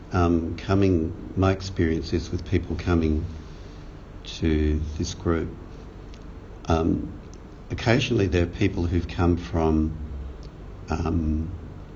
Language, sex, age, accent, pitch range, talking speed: English, male, 50-69, Australian, 80-100 Hz, 100 wpm